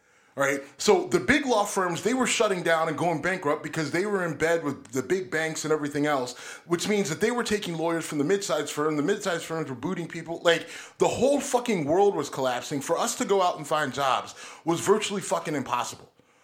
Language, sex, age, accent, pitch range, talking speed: English, male, 30-49, American, 160-255 Hz, 225 wpm